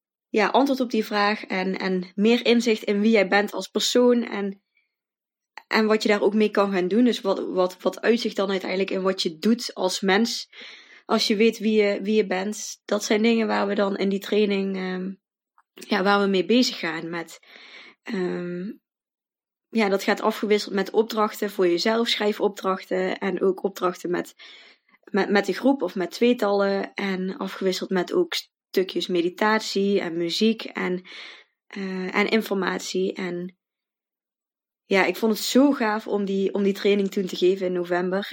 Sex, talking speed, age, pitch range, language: female, 170 wpm, 20-39, 185-215 Hz, Dutch